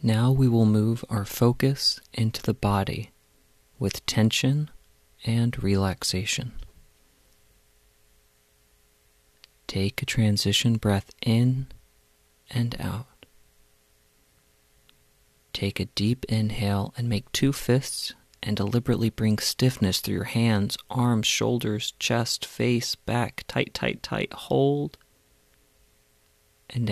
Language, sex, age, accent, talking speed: English, male, 40-59, American, 100 wpm